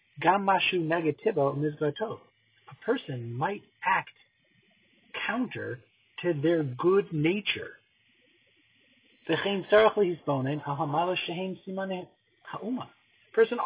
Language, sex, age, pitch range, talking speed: English, male, 40-59, 130-195 Hz, 50 wpm